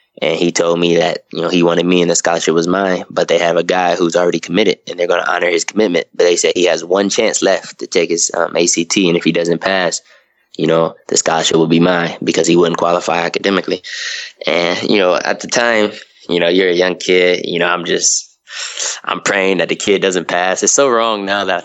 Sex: male